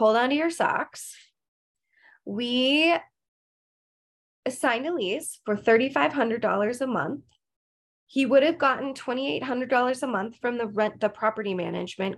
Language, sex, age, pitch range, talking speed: English, female, 20-39, 195-255 Hz, 130 wpm